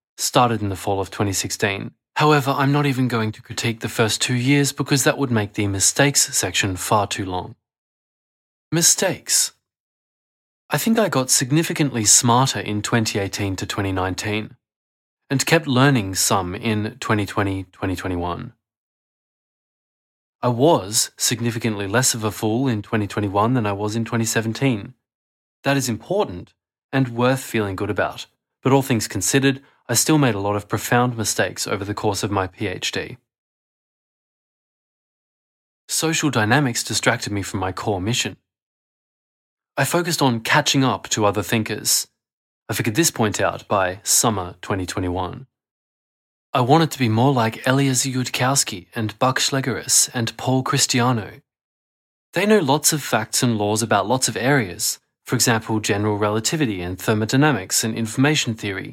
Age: 20-39